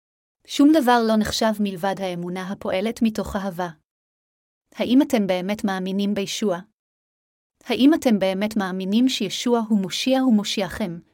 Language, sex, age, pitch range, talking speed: Hebrew, female, 30-49, 195-235 Hz, 120 wpm